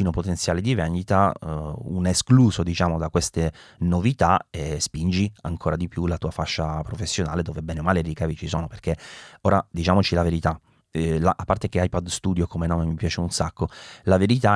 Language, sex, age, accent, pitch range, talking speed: Italian, male, 30-49, native, 80-100 Hz, 195 wpm